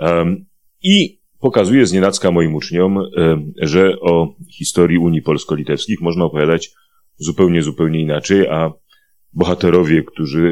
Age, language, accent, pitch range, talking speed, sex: 30-49, Polish, native, 75-100 Hz, 110 wpm, male